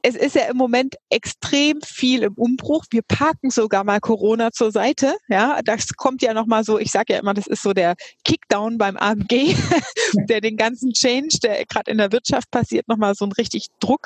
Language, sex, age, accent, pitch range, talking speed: German, female, 30-49, German, 205-245 Hz, 215 wpm